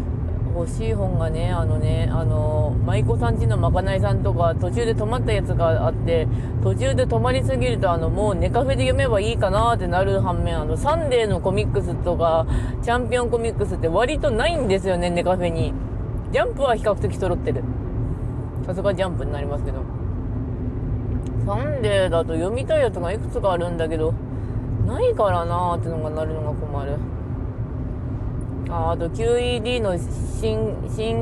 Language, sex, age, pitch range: Japanese, female, 20-39, 110-125 Hz